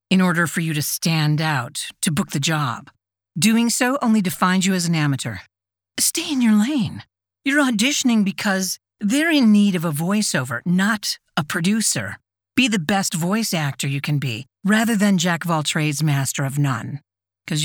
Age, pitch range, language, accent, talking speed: 50-69, 140-200 Hz, English, American, 180 wpm